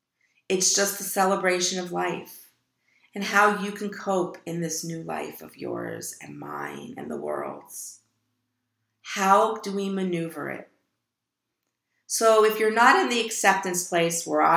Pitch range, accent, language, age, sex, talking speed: 160-195 Hz, American, English, 40-59, female, 150 wpm